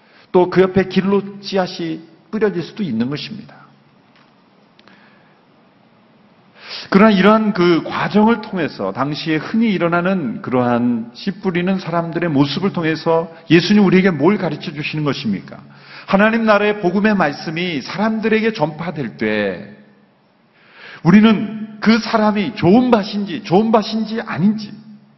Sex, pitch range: male, 165-210 Hz